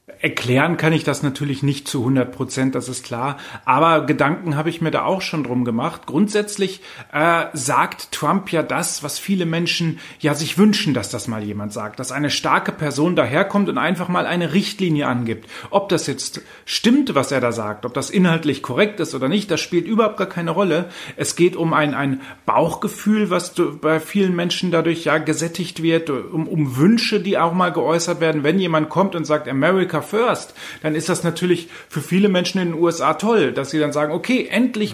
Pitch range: 140-185 Hz